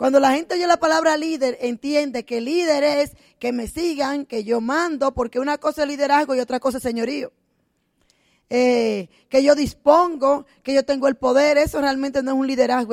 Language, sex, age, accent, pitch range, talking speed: Spanish, female, 10-29, American, 250-300 Hz, 195 wpm